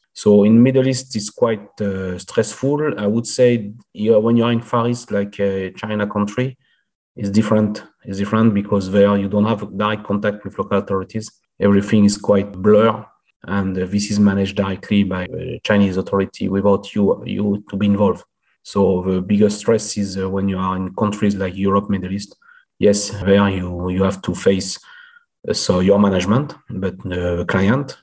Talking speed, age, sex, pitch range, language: 170 wpm, 30-49, male, 100-110 Hz, English